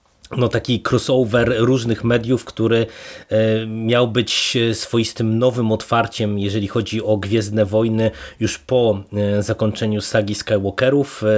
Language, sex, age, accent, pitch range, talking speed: Polish, male, 20-39, native, 105-120 Hz, 110 wpm